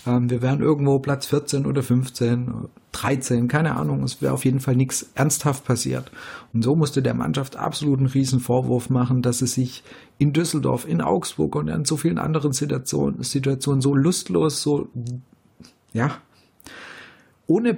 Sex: male